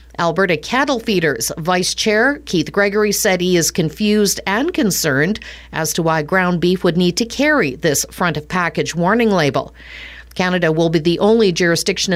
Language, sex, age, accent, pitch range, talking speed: English, female, 50-69, American, 170-225 Hz, 160 wpm